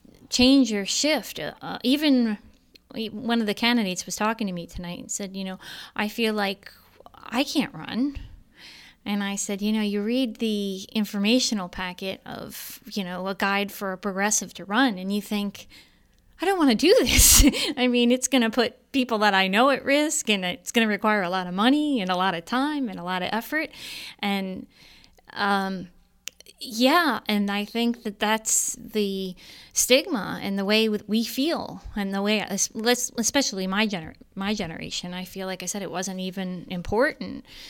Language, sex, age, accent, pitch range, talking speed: English, female, 30-49, American, 195-250 Hz, 185 wpm